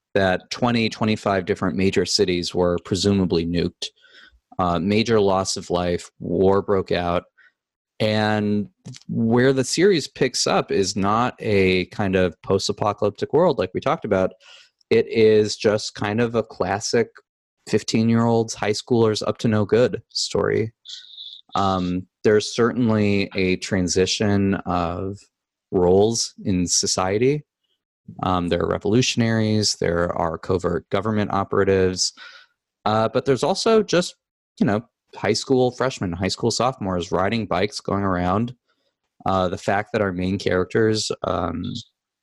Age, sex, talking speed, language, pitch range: 20-39, male, 130 wpm, English, 95-115 Hz